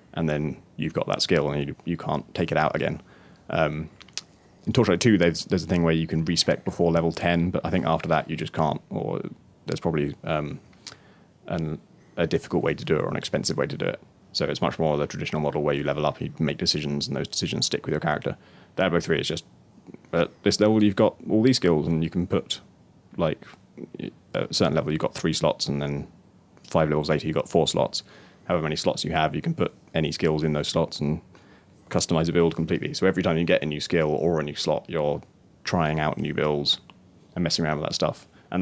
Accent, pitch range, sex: British, 75-85 Hz, male